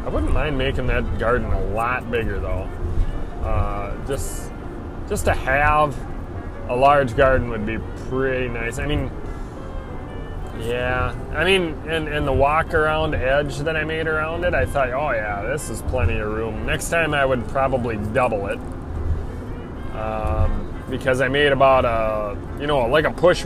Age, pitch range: 20-39, 95-135 Hz